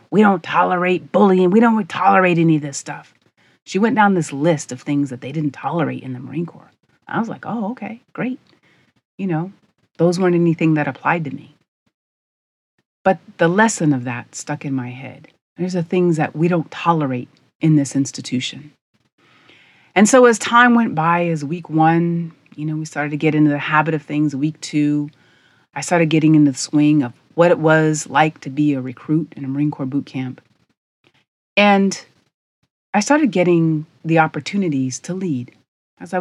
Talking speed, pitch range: 185 wpm, 145-180 Hz